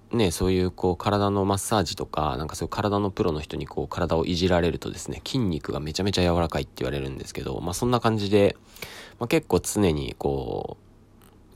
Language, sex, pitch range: Japanese, male, 80-105 Hz